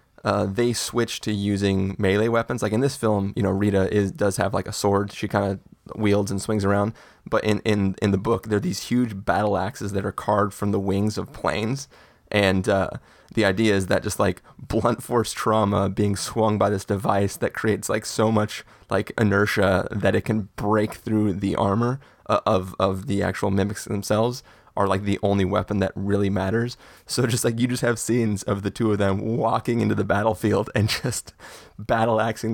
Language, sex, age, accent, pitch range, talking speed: English, male, 20-39, American, 100-115 Hz, 205 wpm